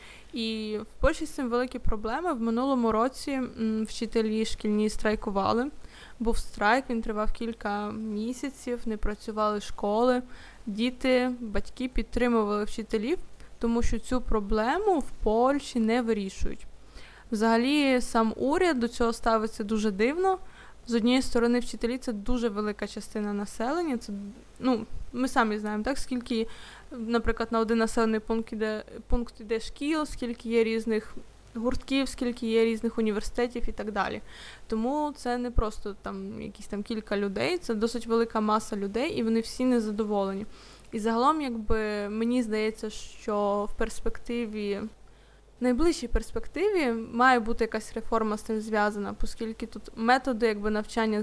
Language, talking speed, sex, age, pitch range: Ukrainian, 135 wpm, female, 20-39, 220-245 Hz